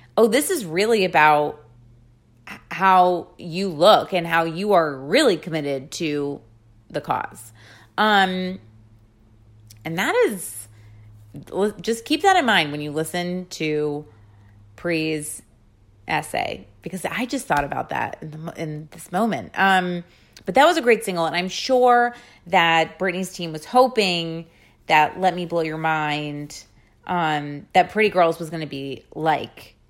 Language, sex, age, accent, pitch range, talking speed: English, female, 30-49, American, 155-235 Hz, 145 wpm